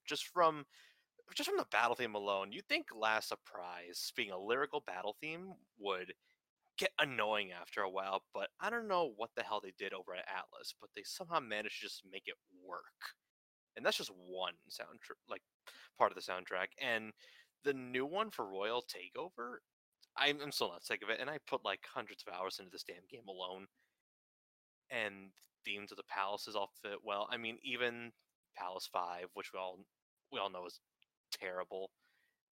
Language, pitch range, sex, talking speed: English, 95-145 Hz, male, 185 wpm